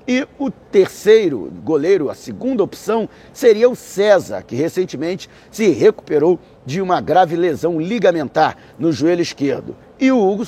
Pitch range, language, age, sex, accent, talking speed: 165-255 Hz, Portuguese, 50-69, male, Brazilian, 145 wpm